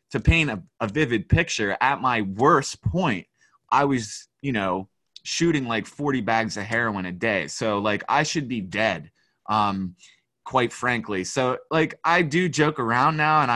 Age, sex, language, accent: 20-39, male, English, American